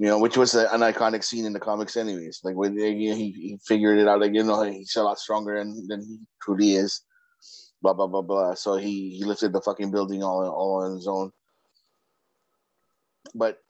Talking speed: 205 wpm